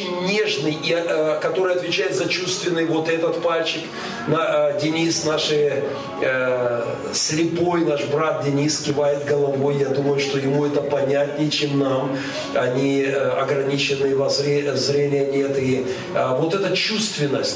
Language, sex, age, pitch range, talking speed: Russian, male, 40-59, 145-200 Hz, 115 wpm